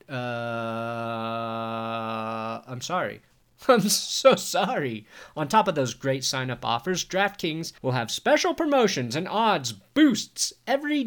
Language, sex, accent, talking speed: English, male, American, 120 wpm